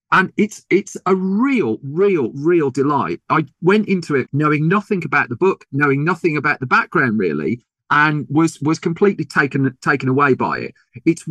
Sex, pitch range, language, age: male, 135-170 Hz, English, 40-59